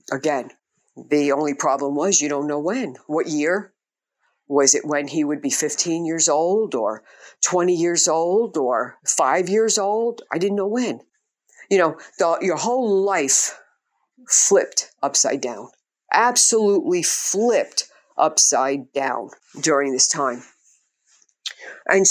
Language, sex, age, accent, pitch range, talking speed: English, female, 50-69, American, 150-220 Hz, 130 wpm